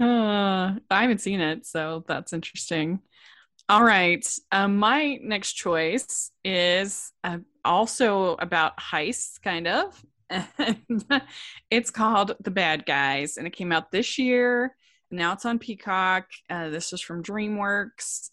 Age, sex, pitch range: 20-39, female, 160-210 Hz